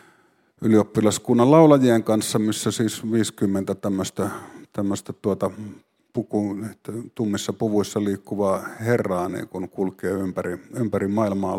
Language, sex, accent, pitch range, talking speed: Finnish, male, native, 100-125 Hz, 100 wpm